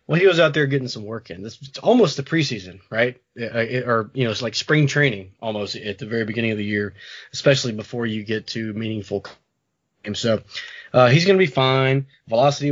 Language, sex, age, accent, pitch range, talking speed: English, male, 20-39, American, 115-140 Hz, 215 wpm